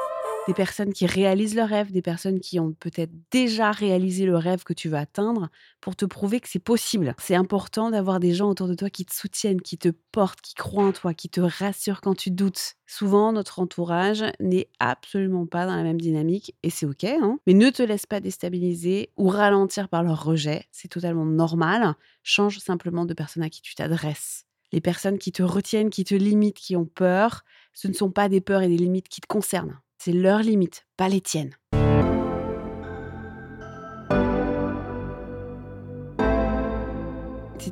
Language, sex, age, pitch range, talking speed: French, female, 30-49, 170-200 Hz, 185 wpm